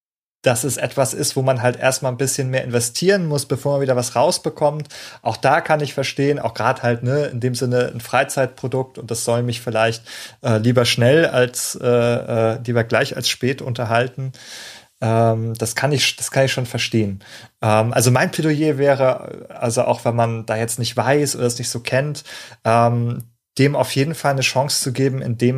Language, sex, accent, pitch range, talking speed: German, male, German, 115-135 Hz, 200 wpm